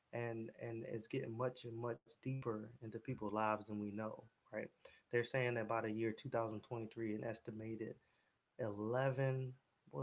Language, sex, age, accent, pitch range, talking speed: English, male, 20-39, American, 110-125 Hz, 155 wpm